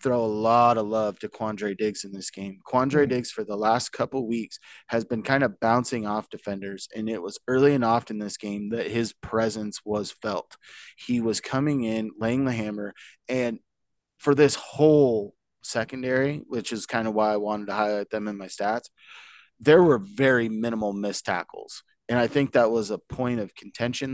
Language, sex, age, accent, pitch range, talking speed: English, male, 20-39, American, 105-125 Hz, 195 wpm